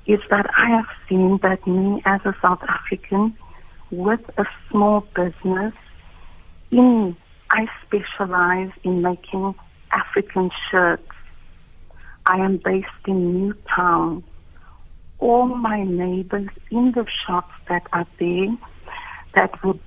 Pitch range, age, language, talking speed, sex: 175-205 Hz, 60-79, English, 110 wpm, female